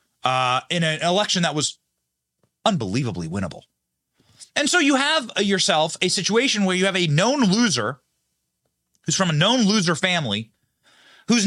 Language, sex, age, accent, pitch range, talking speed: English, male, 30-49, American, 150-215 Hz, 145 wpm